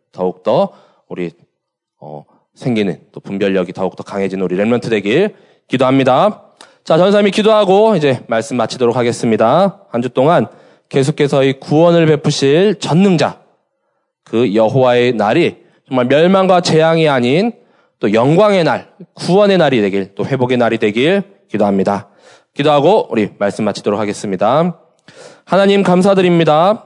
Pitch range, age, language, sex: 120-185 Hz, 20-39, Korean, male